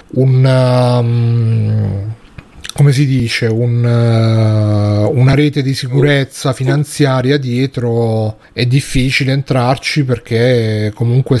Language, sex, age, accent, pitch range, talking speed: Italian, male, 30-49, native, 115-130 Hz, 95 wpm